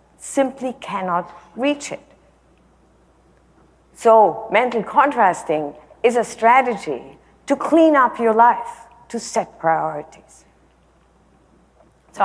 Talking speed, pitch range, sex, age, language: 95 wpm, 195-265 Hz, female, 50-69, English